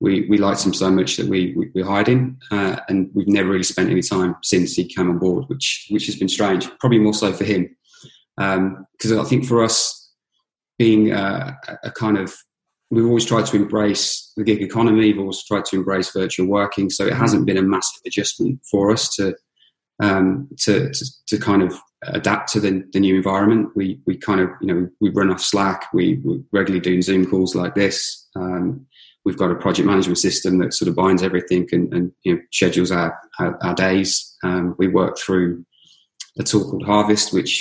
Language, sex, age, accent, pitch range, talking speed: English, male, 20-39, British, 95-105 Hz, 205 wpm